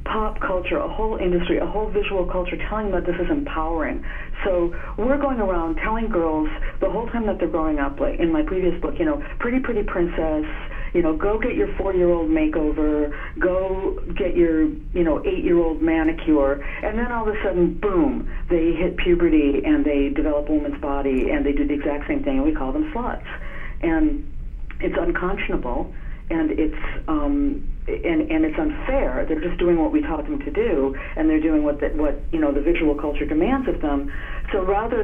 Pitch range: 150-190 Hz